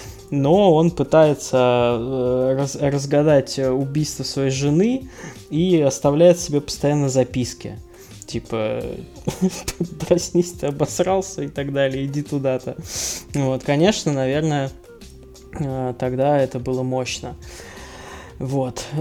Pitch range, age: 120-145 Hz, 20-39